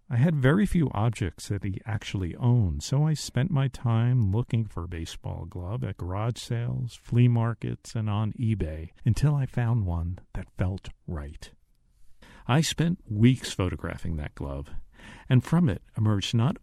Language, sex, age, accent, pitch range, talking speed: English, male, 50-69, American, 80-120 Hz, 160 wpm